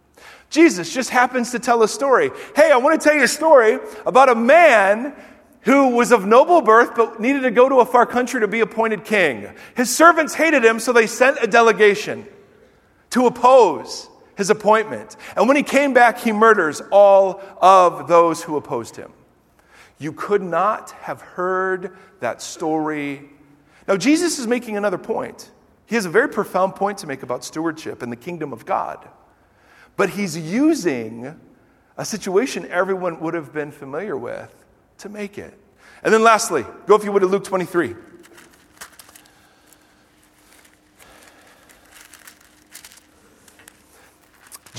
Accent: American